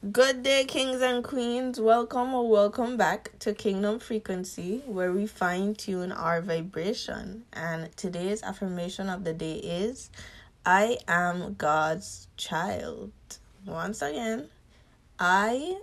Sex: female